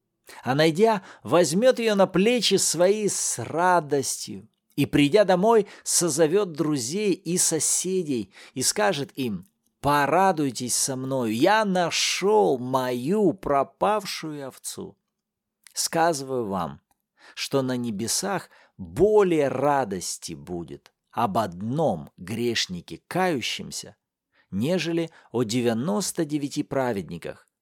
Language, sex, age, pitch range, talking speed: Russian, male, 50-69, 135-200 Hz, 95 wpm